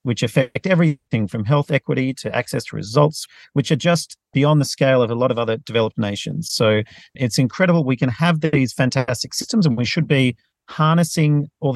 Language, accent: English, Australian